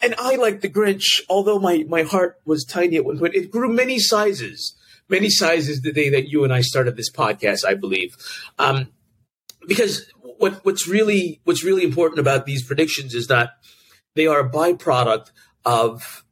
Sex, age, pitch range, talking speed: male, 40-59, 120-175 Hz, 180 wpm